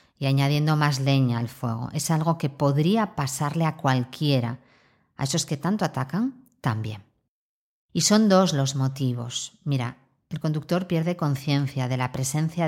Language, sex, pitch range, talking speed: Spanish, female, 135-185 Hz, 150 wpm